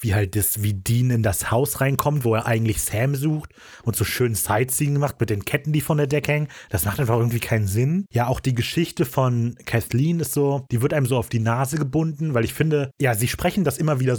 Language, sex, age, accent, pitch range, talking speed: German, male, 30-49, German, 105-140 Hz, 245 wpm